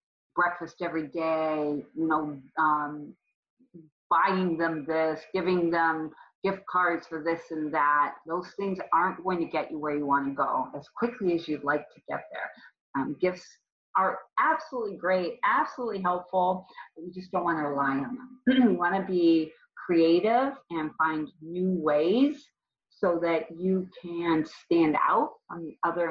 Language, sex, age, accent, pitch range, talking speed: English, female, 40-59, American, 160-220 Hz, 165 wpm